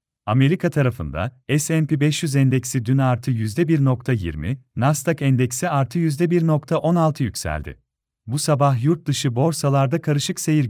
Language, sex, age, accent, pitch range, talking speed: Turkish, male, 40-59, native, 125-150 Hz, 105 wpm